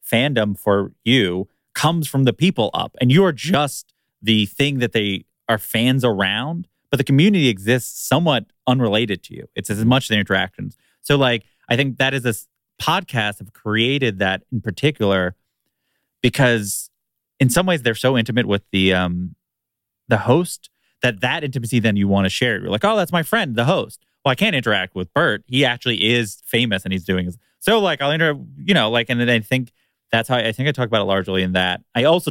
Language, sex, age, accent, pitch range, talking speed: English, male, 30-49, American, 95-125 Hz, 205 wpm